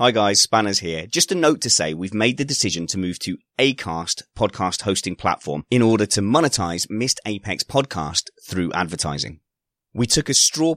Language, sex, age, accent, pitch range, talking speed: English, male, 30-49, British, 95-125 Hz, 185 wpm